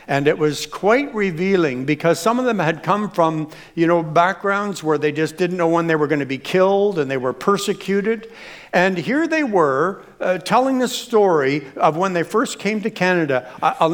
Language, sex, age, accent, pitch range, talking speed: English, male, 60-79, American, 160-225 Hz, 200 wpm